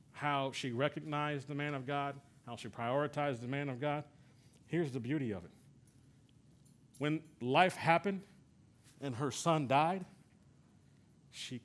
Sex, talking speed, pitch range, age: male, 140 wpm, 120-145 Hz, 50-69